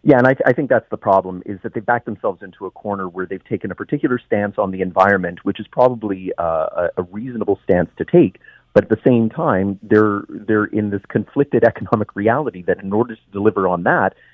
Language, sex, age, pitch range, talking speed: English, male, 30-49, 95-115 Hz, 220 wpm